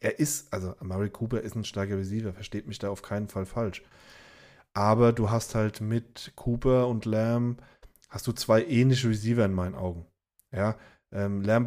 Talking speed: 180 wpm